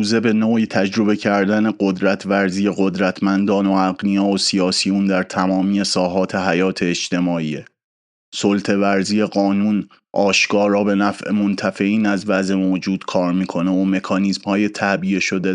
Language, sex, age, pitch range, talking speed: Persian, male, 30-49, 95-100 Hz, 135 wpm